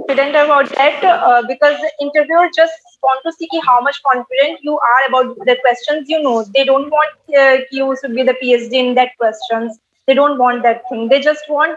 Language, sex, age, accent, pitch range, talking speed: English, female, 20-39, Indian, 250-295 Hz, 205 wpm